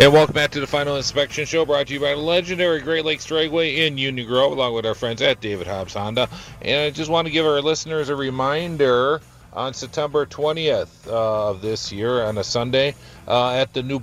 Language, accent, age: English, American, 40-59